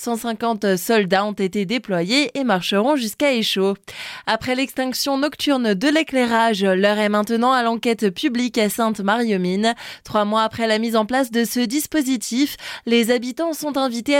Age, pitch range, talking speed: 20-39, 205-265 Hz, 150 wpm